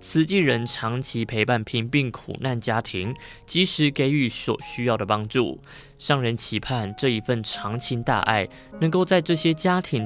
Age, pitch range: 20-39, 105-140 Hz